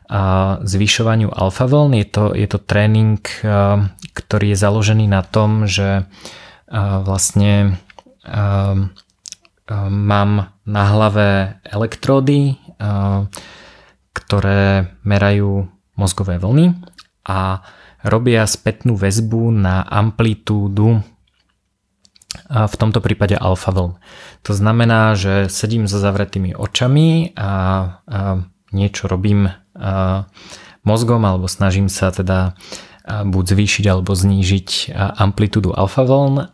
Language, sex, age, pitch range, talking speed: Slovak, male, 20-39, 95-110 Hz, 90 wpm